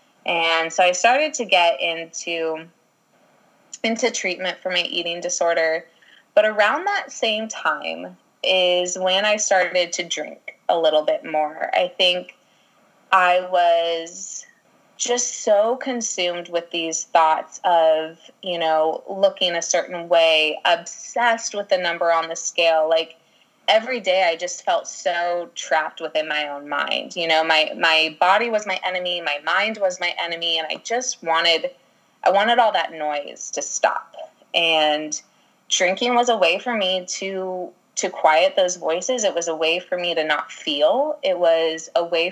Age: 20-39